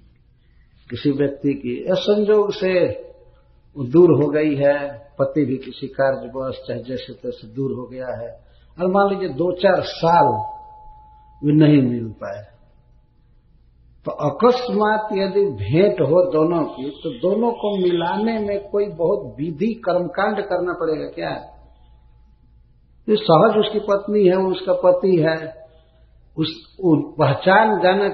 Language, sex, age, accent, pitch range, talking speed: Hindi, male, 50-69, native, 135-205 Hz, 135 wpm